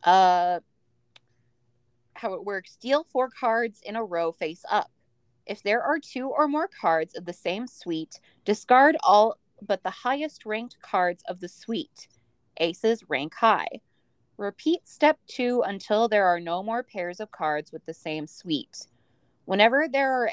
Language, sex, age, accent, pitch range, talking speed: English, female, 20-39, American, 170-245 Hz, 160 wpm